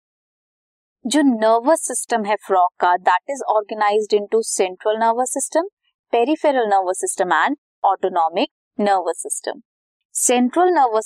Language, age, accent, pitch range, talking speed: Hindi, 20-39, native, 205-290 Hz, 120 wpm